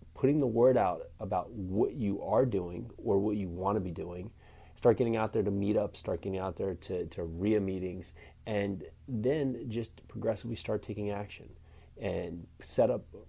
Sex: male